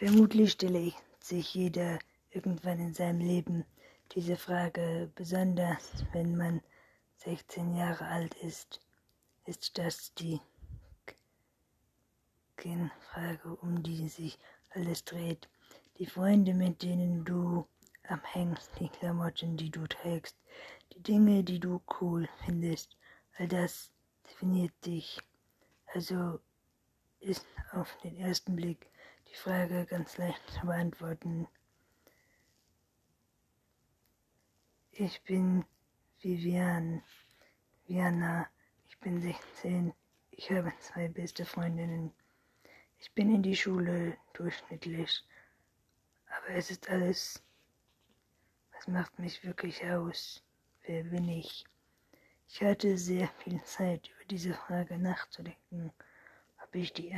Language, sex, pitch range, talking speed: German, female, 170-180 Hz, 105 wpm